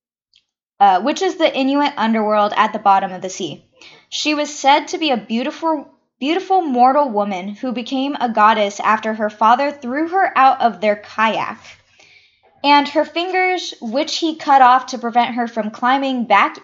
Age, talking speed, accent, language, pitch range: 10-29, 175 wpm, American, English, 205-295 Hz